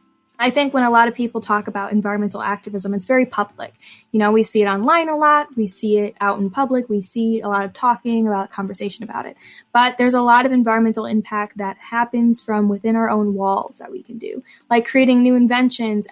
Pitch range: 210-245 Hz